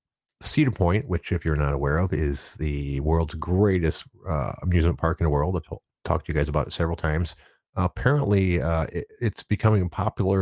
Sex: male